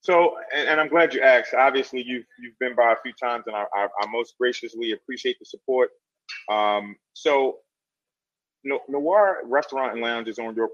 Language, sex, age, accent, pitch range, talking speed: English, male, 30-49, American, 110-165 Hz, 180 wpm